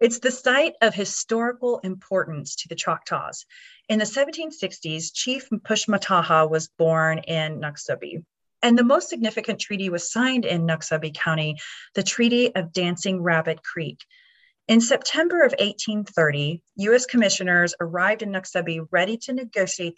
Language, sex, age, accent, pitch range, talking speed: English, female, 30-49, American, 170-225 Hz, 140 wpm